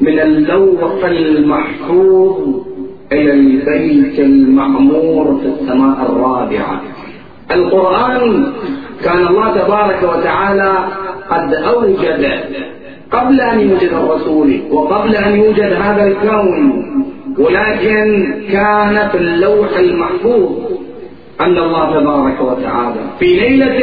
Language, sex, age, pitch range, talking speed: Arabic, male, 40-59, 175-255 Hz, 90 wpm